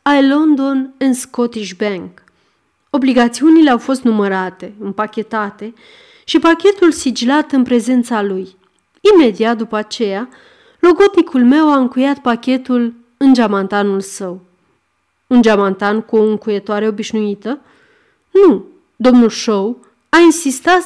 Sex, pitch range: female, 215-290 Hz